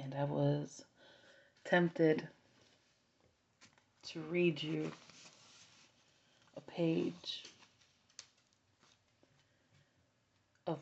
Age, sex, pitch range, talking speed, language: 30-49, female, 130-155 Hz, 55 wpm, English